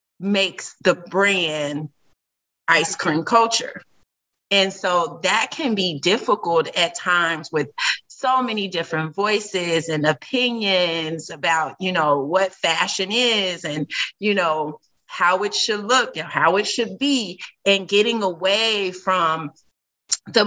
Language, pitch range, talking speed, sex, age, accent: English, 175-230 Hz, 130 wpm, female, 30-49, American